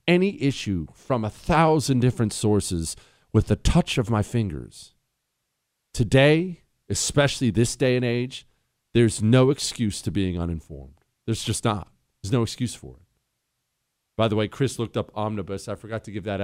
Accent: American